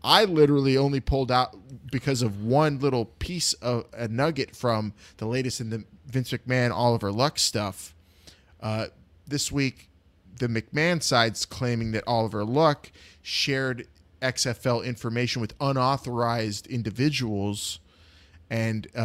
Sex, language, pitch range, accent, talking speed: male, English, 105-140 Hz, American, 125 wpm